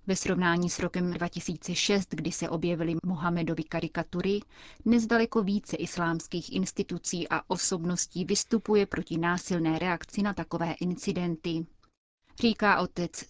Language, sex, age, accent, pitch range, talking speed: Czech, female, 30-49, native, 170-195 Hz, 115 wpm